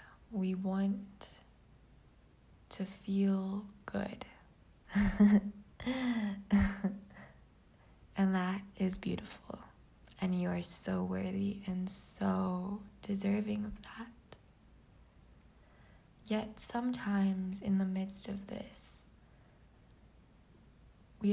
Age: 20-39